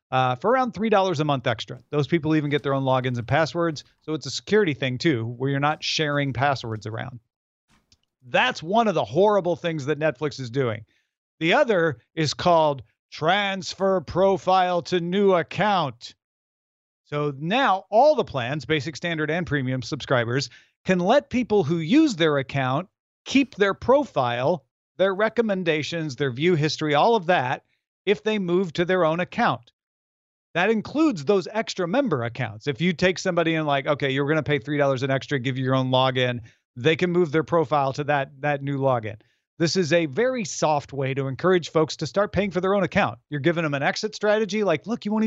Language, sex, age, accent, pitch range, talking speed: English, male, 40-59, American, 135-185 Hz, 190 wpm